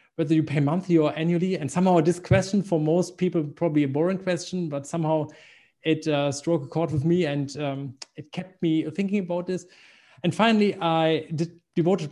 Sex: male